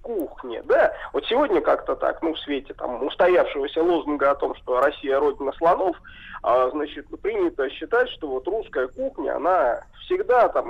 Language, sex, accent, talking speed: Russian, male, native, 165 wpm